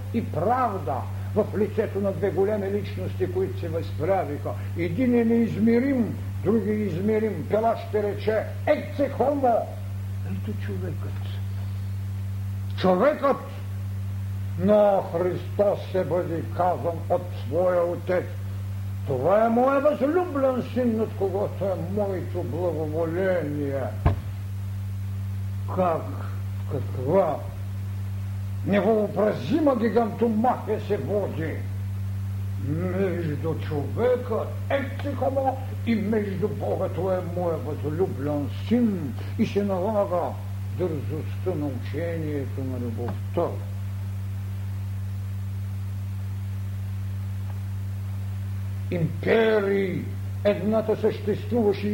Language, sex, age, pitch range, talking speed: Bulgarian, male, 60-79, 95-105 Hz, 80 wpm